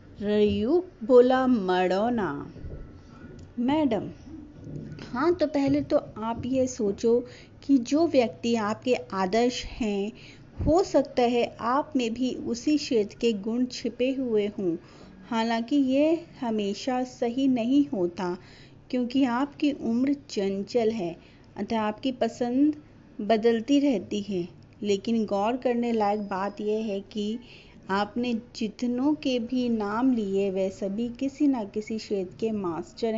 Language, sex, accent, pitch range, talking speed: Hindi, female, native, 210-260 Hz, 120 wpm